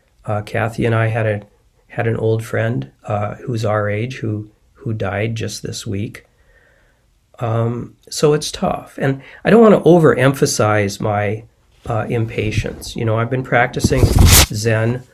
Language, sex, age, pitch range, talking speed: English, male, 40-59, 110-130 Hz, 155 wpm